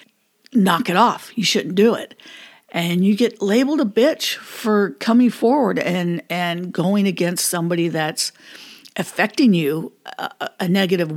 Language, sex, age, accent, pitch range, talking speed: English, female, 60-79, American, 175-230 Hz, 145 wpm